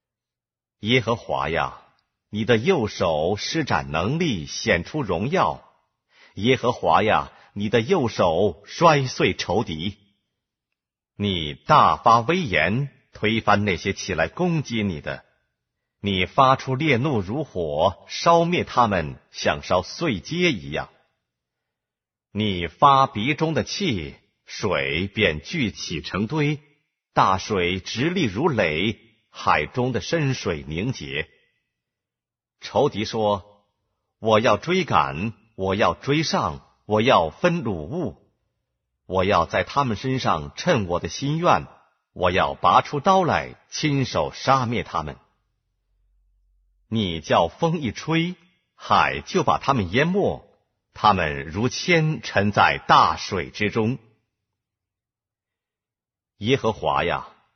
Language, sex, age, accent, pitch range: Korean, male, 50-69, Chinese, 95-140 Hz